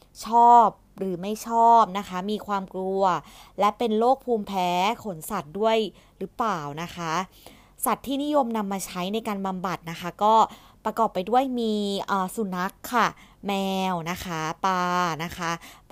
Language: Thai